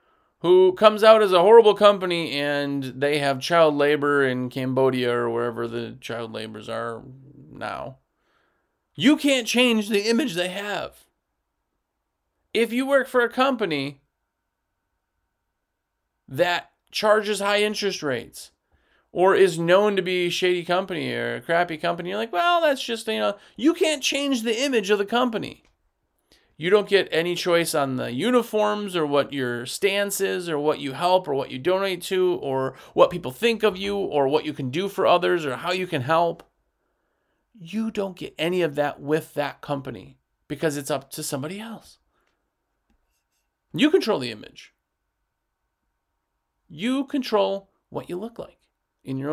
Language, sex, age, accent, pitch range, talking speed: English, male, 30-49, American, 140-210 Hz, 160 wpm